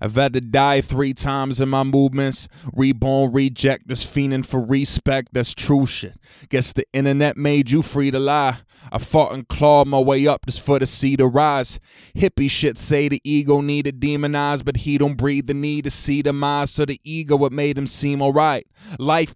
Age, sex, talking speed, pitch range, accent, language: 20-39, male, 205 wpm, 135-145 Hz, American, English